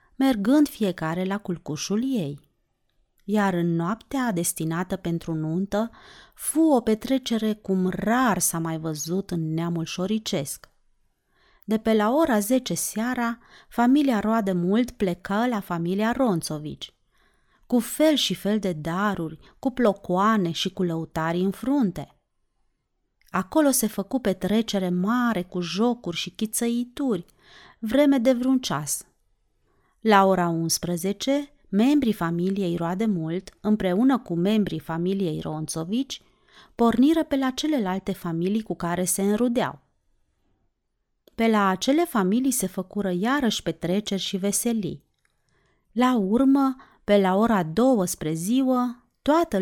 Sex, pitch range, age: female, 175-240 Hz, 30-49